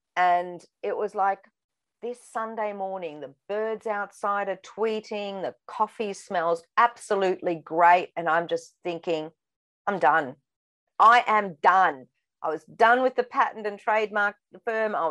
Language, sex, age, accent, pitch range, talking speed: English, female, 40-59, Australian, 175-215 Hz, 145 wpm